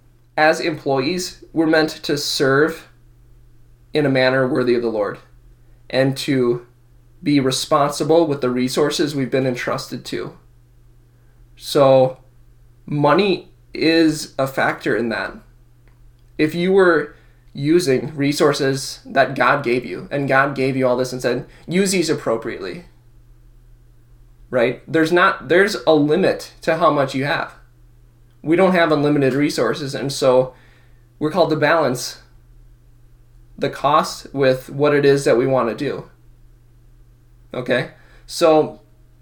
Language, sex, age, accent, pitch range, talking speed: English, male, 20-39, American, 120-155 Hz, 130 wpm